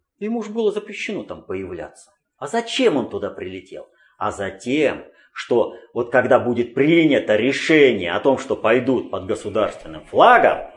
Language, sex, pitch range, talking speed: Russian, male, 125-180 Hz, 145 wpm